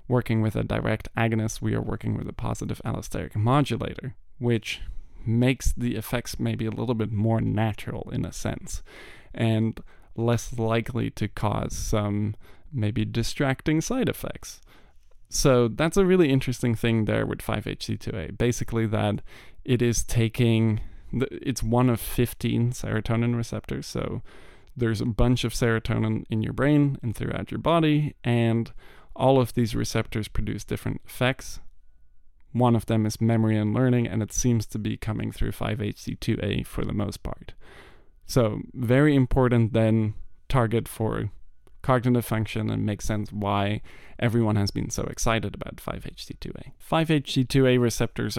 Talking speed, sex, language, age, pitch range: 145 wpm, male, English, 20-39, 110-125 Hz